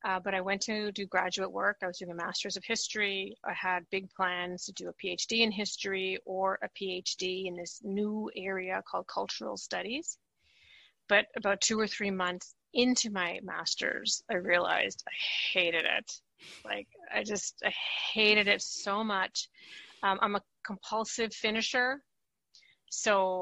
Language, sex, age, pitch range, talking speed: English, female, 30-49, 185-215 Hz, 160 wpm